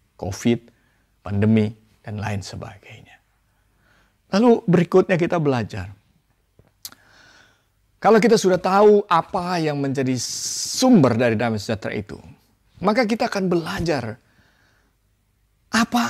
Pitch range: 105-175 Hz